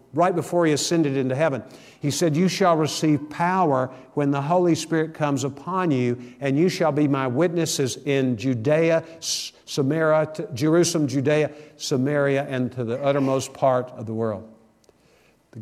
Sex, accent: male, American